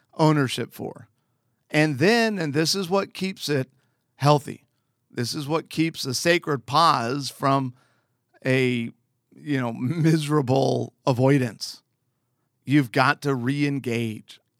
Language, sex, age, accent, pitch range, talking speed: English, male, 50-69, American, 125-160 Hz, 115 wpm